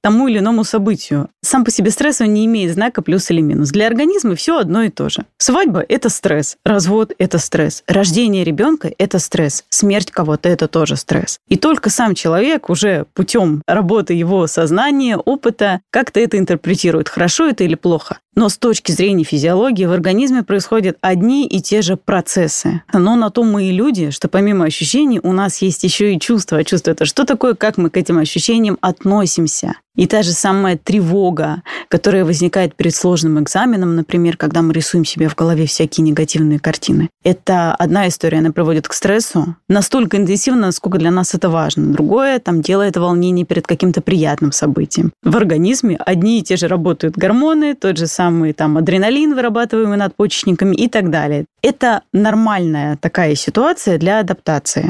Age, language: 20-39, Russian